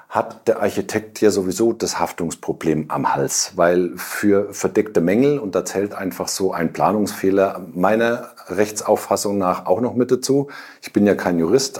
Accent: German